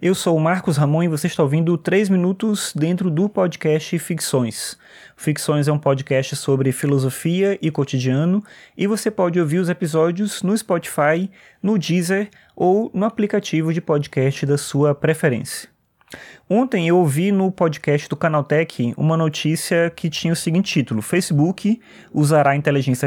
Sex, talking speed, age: male, 155 wpm, 20-39